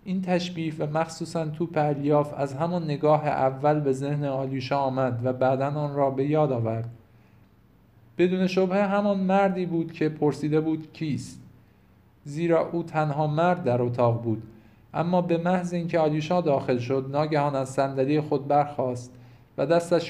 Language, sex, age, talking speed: Persian, male, 50-69, 150 wpm